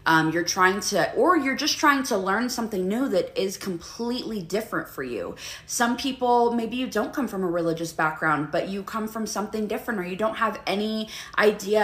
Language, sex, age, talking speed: English, female, 20-39, 205 wpm